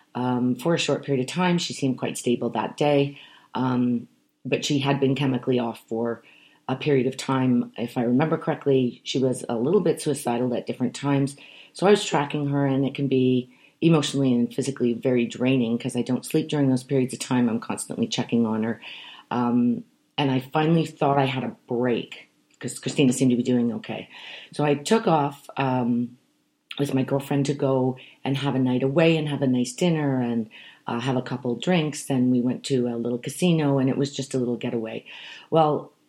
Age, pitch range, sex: 40-59, 120-140 Hz, female